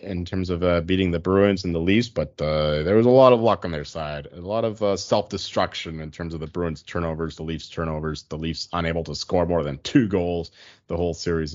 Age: 30-49